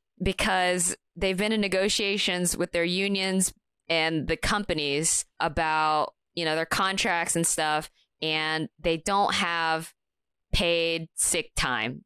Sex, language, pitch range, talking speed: female, English, 155-200 Hz, 125 wpm